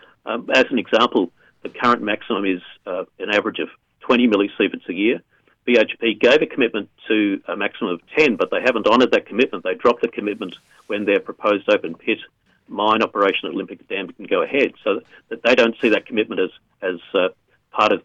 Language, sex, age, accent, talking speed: English, male, 50-69, Australian, 195 wpm